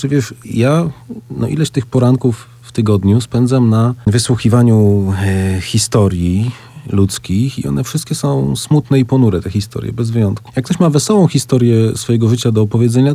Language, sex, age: Polish, male, 40-59